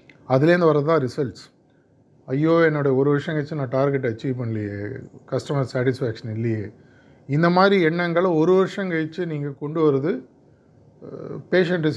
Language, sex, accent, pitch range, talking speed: Tamil, male, native, 130-155 Hz, 125 wpm